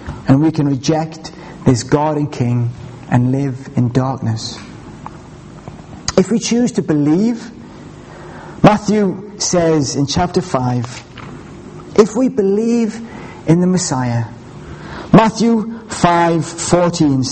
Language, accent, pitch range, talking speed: English, British, 140-205 Hz, 105 wpm